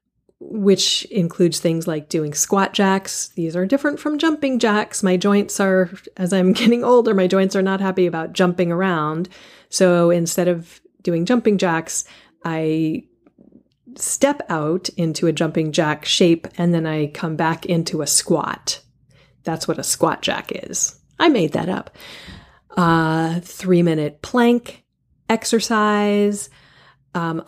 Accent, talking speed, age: American, 145 wpm, 30-49